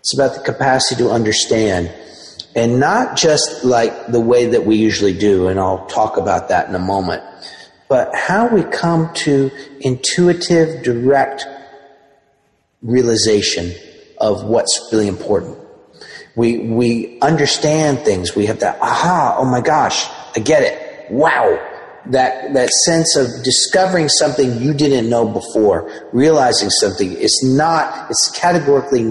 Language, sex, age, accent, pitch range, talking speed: English, male, 40-59, American, 115-145 Hz, 140 wpm